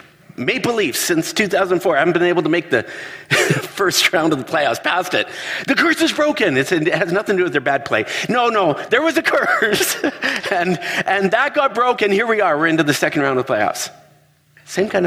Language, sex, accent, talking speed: English, male, American, 225 wpm